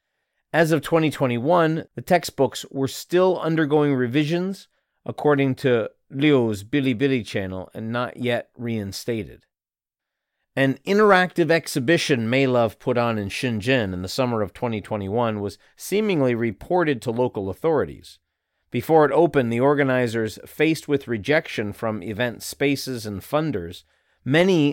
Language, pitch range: English, 110-150 Hz